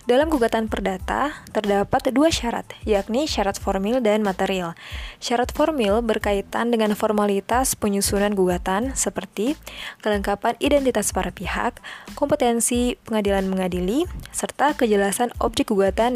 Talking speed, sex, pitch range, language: 110 wpm, female, 200-250 Hz, Indonesian